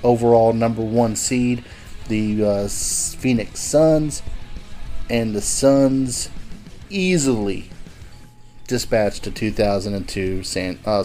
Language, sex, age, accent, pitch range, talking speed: English, male, 30-49, American, 105-125 Hz, 80 wpm